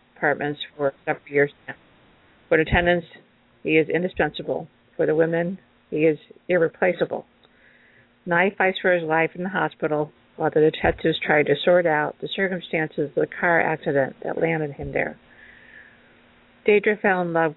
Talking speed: 155 wpm